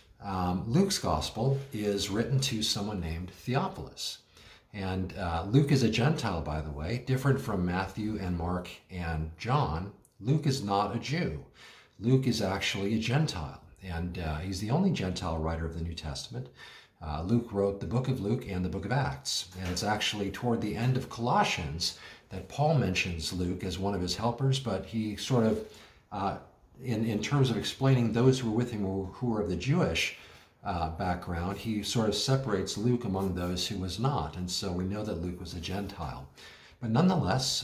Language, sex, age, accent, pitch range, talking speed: English, male, 50-69, American, 90-120 Hz, 190 wpm